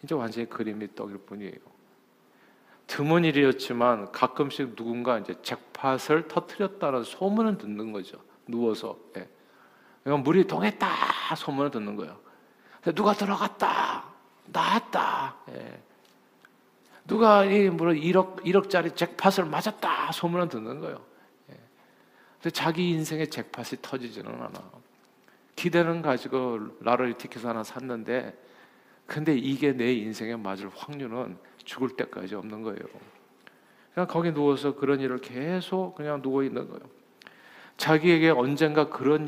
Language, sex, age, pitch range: Korean, male, 50-69, 115-165 Hz